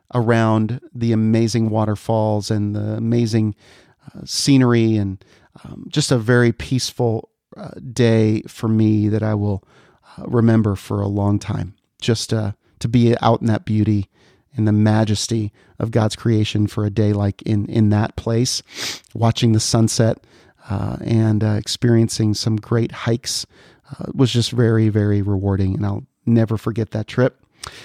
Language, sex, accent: English, male, American